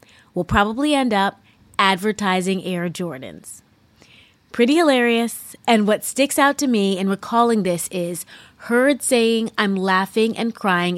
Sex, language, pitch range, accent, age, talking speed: female, English, 190-255 Hz, American, 20-39, 135 wpm